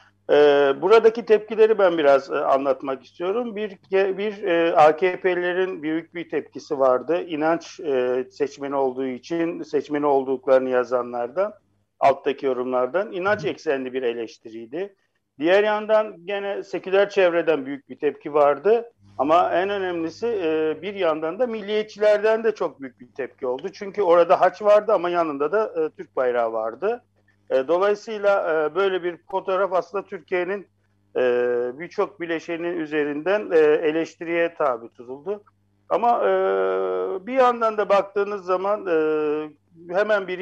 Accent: native